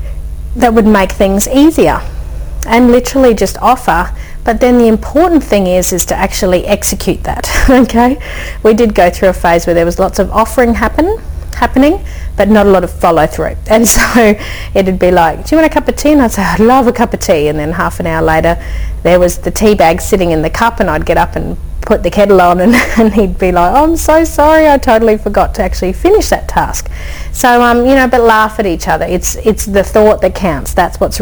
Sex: female